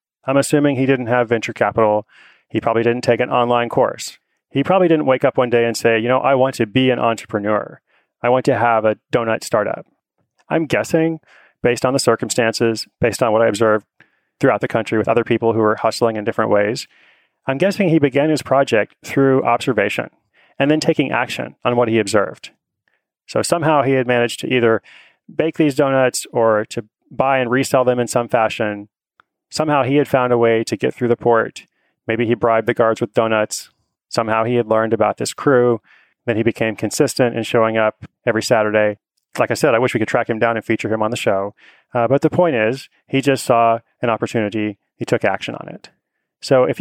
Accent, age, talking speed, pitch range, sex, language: American, 30-49, 210 wpm, 115-135 Hz, male, English